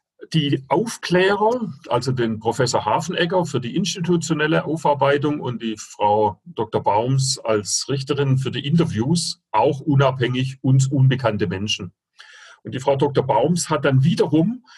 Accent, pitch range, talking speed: German, 125-170 Hz, 135 wpm